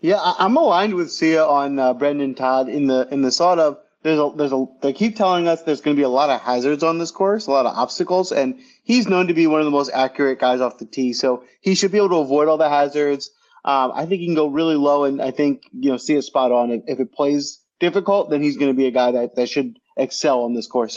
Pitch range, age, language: 130-175 Hz, 30-49, English